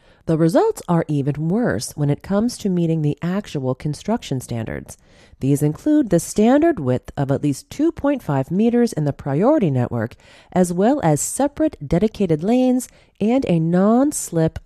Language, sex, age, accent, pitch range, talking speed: English, female, 30-49, American, 140-225 Hz, 150 wpm